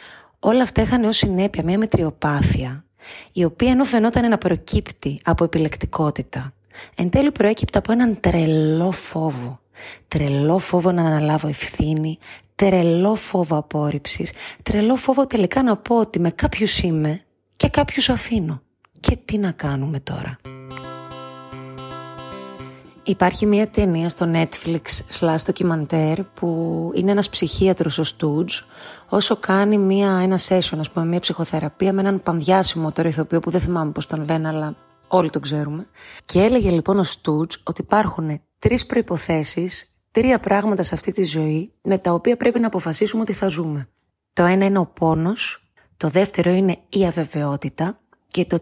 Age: 30-49